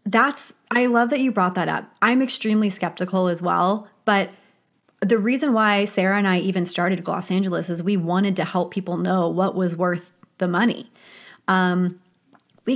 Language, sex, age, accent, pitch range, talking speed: English, female, 30-49, American, 185-235 Hz, 180 wpm